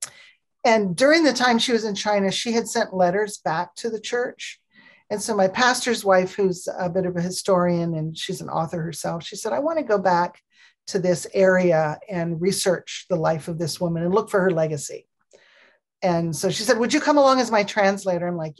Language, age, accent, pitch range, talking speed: English, 40-59, American, 175-220 Hz, 215 wpm